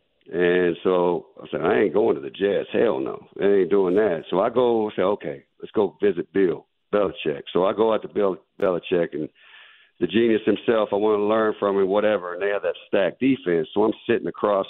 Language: English